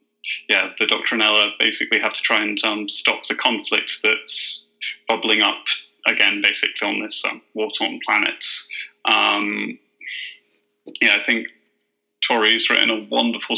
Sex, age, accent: male, 20-39, British